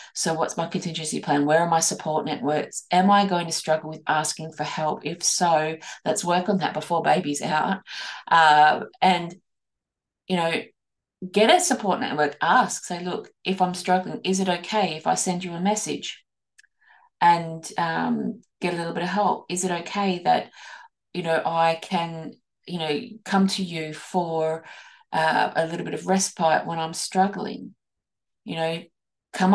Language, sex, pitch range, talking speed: English, female, 160-200 Hz, 175 wpm